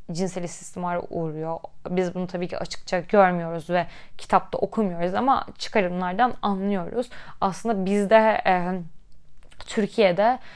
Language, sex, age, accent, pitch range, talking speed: Turkish, female, 10-29, native, 185-220 Hz, 110 wpm